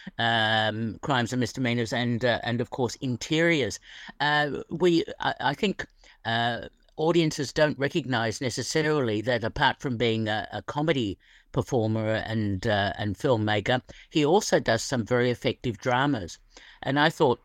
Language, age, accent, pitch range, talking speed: English, 50-69, British, 110-140 Hz, 145 wpm